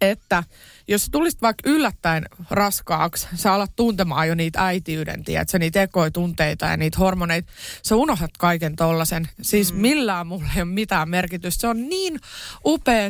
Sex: female